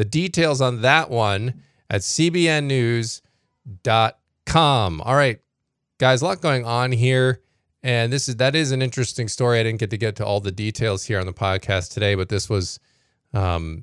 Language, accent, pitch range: English, American, 100-130 Hz